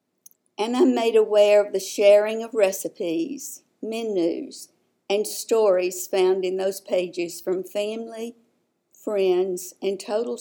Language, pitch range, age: English, 195-250 Hz, 50-69